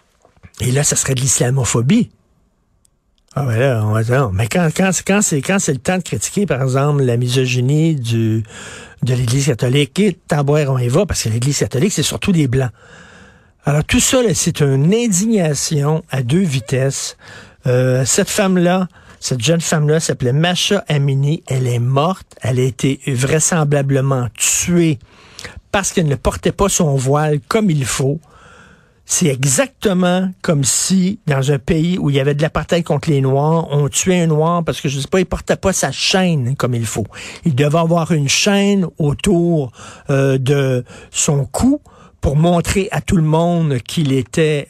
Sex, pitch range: male, 130-170 Hz